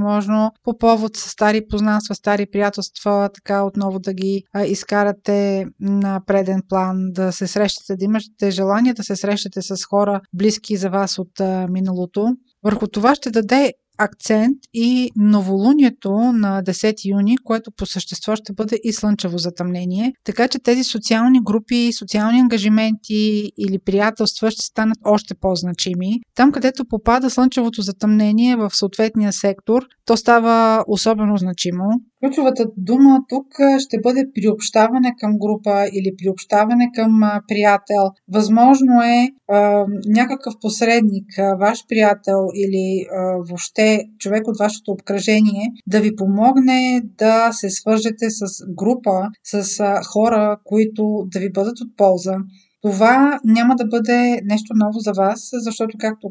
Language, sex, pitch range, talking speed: Bulgarian, female, 200-230 Hz, 135 wpm